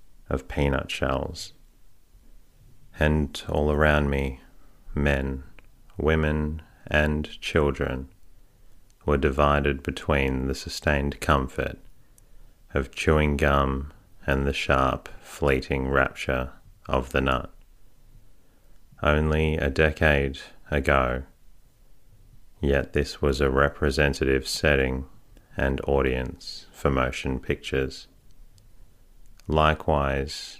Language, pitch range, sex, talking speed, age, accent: English, 70-80 Hz, male, 85 wpm, 30-49, Australian